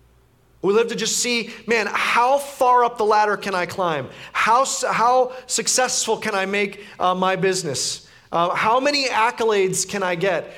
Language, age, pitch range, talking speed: English, 30-49, 205-245 Hz, 170 wpm